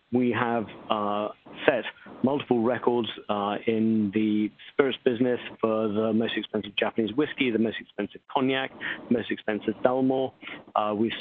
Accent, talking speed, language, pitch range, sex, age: British, 145 wpm, English, 110-125 Hz, male, 40-59